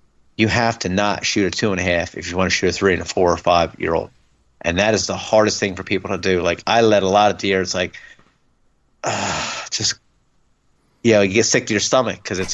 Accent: American